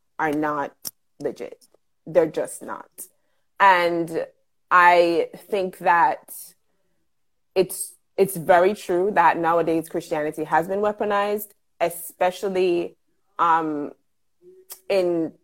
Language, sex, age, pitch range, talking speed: English, female, 30-49, 165-215 Hz, 90 wpm